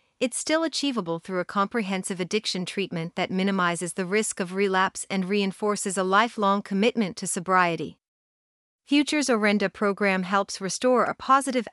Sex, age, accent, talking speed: female, 40-59, American, 145 wpm